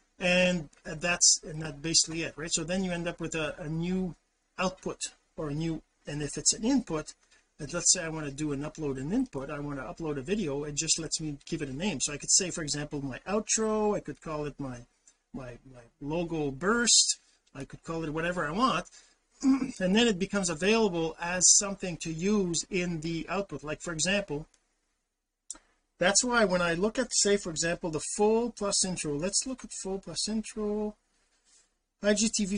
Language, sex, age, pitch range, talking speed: English, male, 40-59, 150-200 Hz, 195 wpm